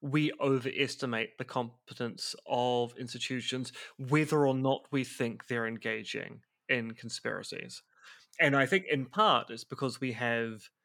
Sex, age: male, 30-49